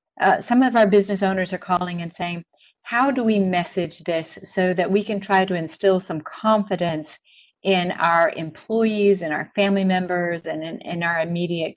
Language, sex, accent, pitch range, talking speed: English, female, American, 165-195 Hz, 185 wpm